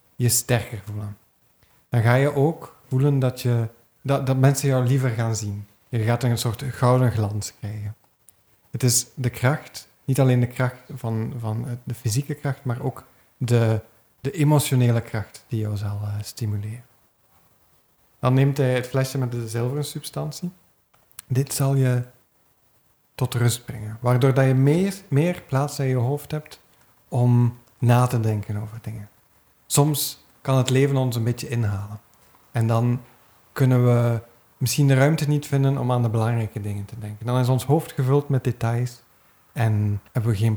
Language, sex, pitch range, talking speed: Dutch, male, 110-135 Hz, 165 wpm